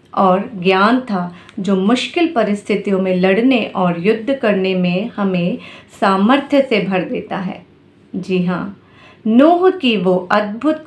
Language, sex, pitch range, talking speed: Hindi, female, 185-250 Hz, 135 wpm